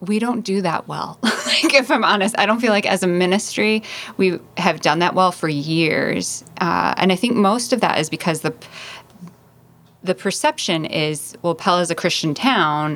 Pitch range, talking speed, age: 155-195 Hz, 195 wpm, 20-39